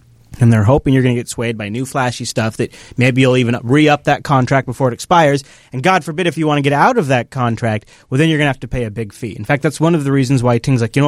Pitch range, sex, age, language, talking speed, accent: 120-160 Hz, male, 30-49, English, 310 wpm, American